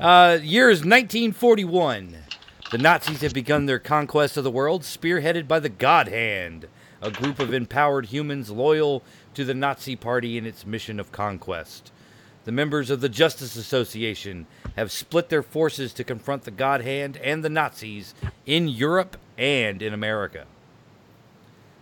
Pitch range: 115-155 Hz